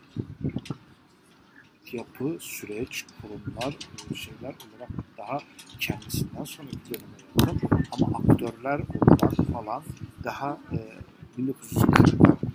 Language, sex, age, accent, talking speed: Turkish, male, 50-69, native, 70 wpm